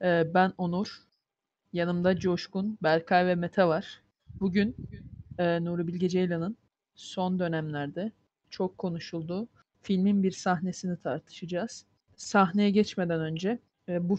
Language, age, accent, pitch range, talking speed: Turkish, 20-39, native, 175-200 Hz, 100 wpm